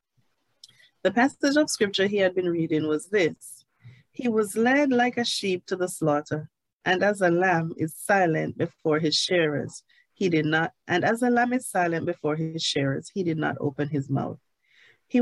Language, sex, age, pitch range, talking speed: English, female, 30-49, 155-225 Hz, 185 wpm